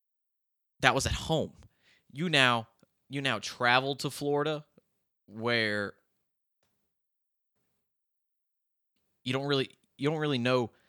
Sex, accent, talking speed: male, American, 105 wpm